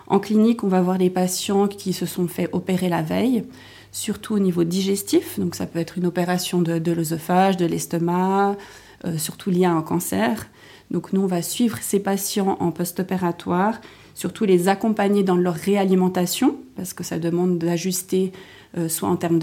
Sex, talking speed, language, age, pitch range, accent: female, 180 wpm, French, 30-49, 170-195 Hz, French